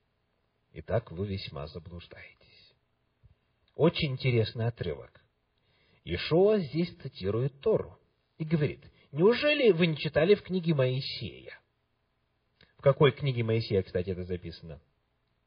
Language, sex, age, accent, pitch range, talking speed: Russian, male, 40-59, native, 105-170 Hz, 105 wpm